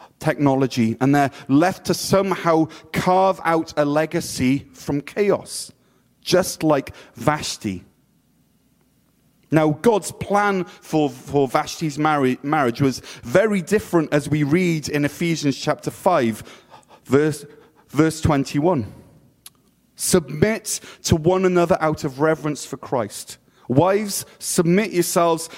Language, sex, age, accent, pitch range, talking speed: English, male, 30-49, British, 145-185 Hz, 115 wpm